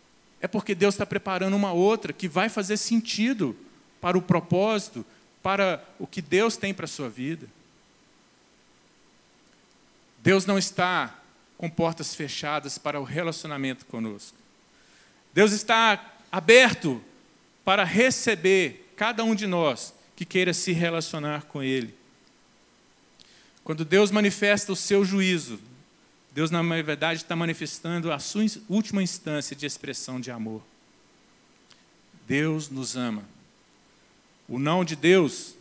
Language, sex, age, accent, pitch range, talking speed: Portuguese, male, 40-59, Brazilian, 140-190 Hz, 125 wpm